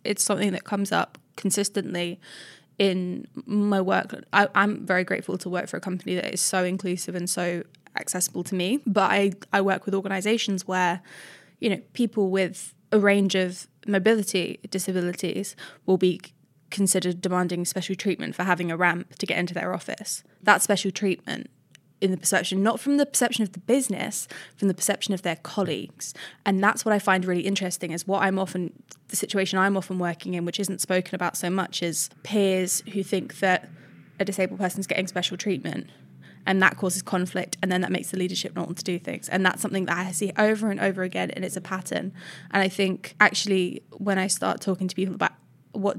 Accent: British